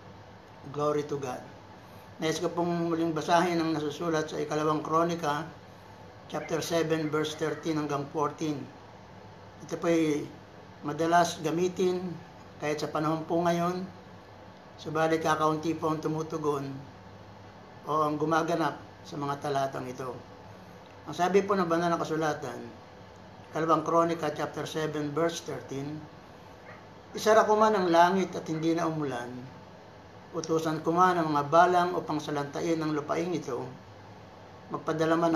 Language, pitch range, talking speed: Filipino, 140-170 Hz, 120 wpm